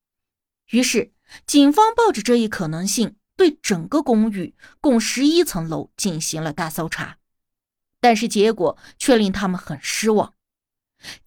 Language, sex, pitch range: Chinese, female, 170-265 Hz